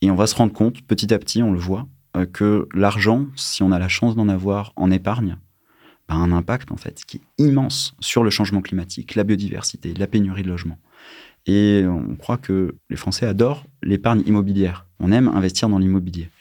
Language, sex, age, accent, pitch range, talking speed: French, male, 30-49, French, 90-115 Hz, 210 wpm